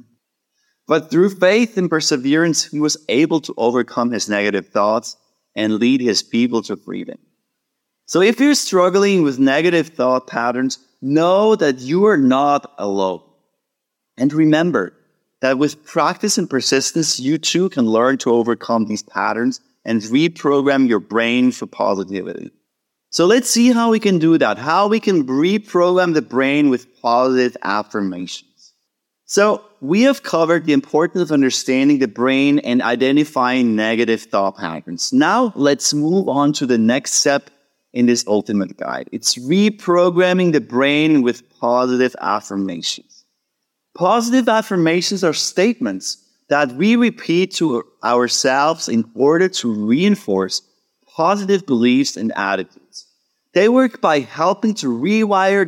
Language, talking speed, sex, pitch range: English, 140 wpm, male, 120-185 Hz